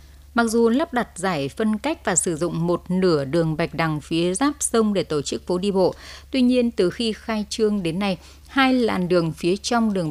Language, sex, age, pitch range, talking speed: Vietnamese, female, 20-39, 165-215 Hz, 225 wpm